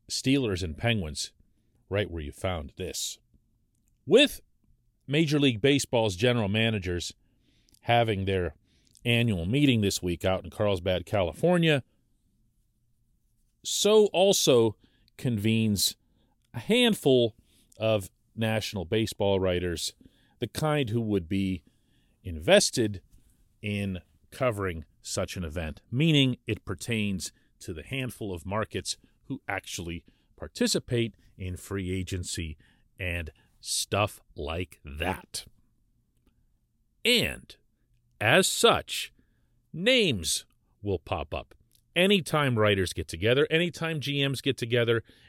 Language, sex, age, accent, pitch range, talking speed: English, male, 40-59, American, 95-120 Hz, 100 wpm